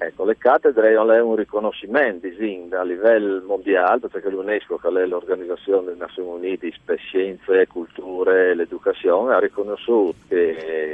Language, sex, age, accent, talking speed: Italian, male, 50-69, native, 145 wpm